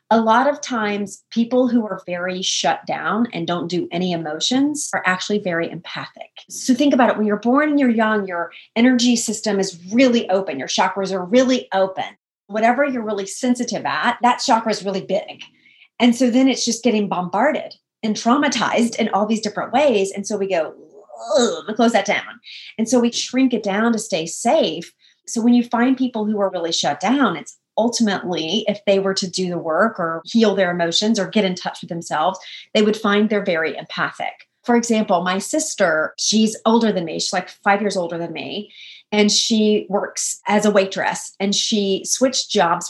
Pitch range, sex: 190-235 Hz, female